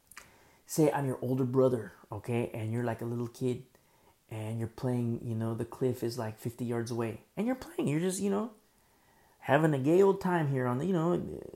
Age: 30-49